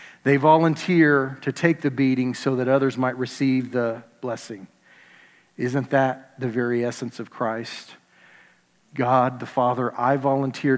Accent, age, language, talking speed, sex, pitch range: American, 40-59, English, 140 wpm, male, 125-150 Hz